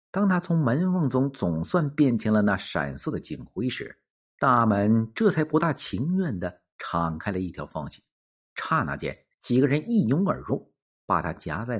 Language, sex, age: Chinese, male, 50-69